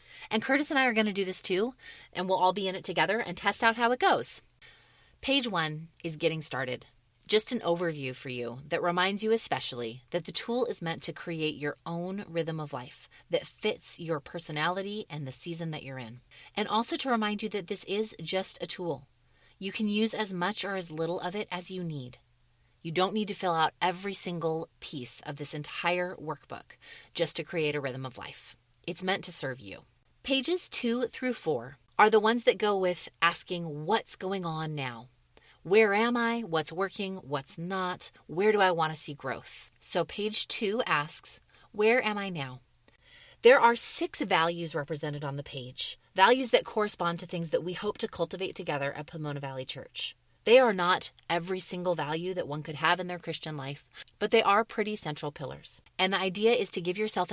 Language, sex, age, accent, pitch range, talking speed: English, female, 30-49, American, 150-210 Hz, 205 wpm